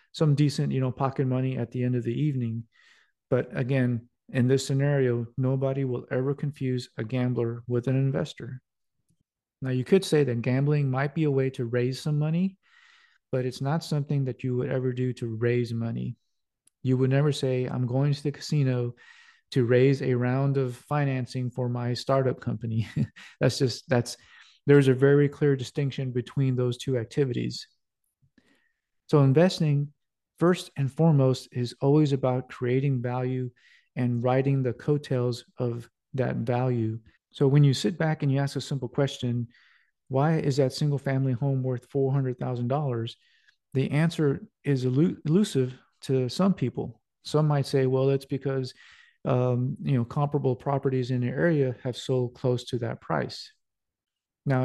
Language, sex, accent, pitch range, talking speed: English, male, American, 125-140 Hz, 165 wpm